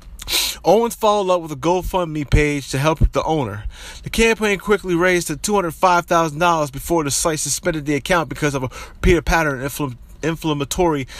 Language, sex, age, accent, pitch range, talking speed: English, male, 30-49, American, 135-165 Hz, 160 wpm